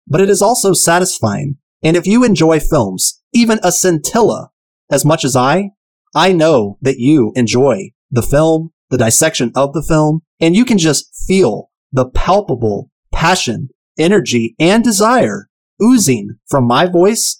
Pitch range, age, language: 130-180 Hz, 30-49, English